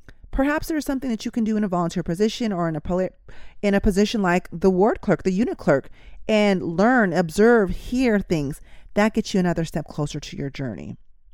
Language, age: English, 30-49